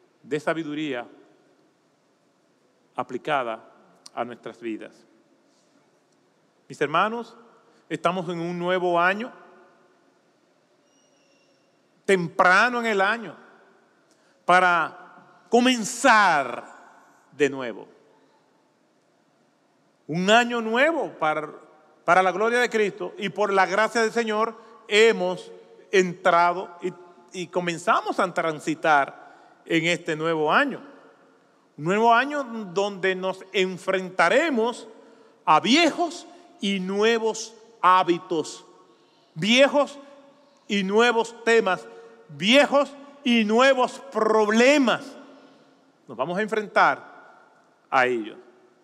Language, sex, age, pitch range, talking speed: Spanish, male, 40-59, 180-280 Hz, 90 wpm